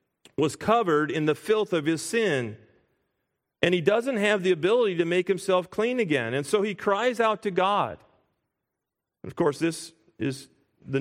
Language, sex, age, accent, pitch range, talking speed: English, male, 40-59, American, 145-200 Hz, 170 wpm